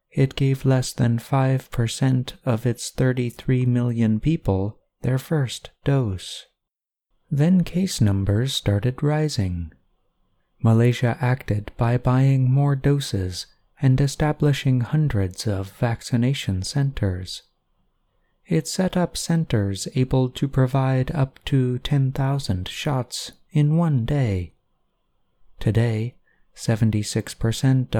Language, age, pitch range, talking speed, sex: English, 30-49, 105-135 Hz, 100 wpm, male